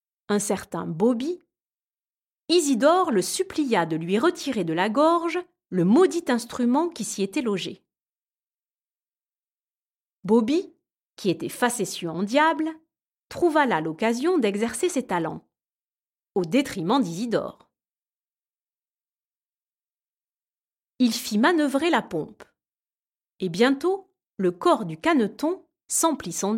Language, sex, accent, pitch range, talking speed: French, female, French, 195-315 Hz, 105 wpm